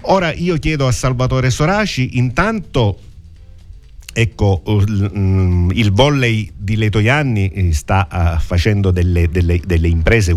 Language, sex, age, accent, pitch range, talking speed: Italian, male, 50-69, native, 85-110 Hz, 105 wpm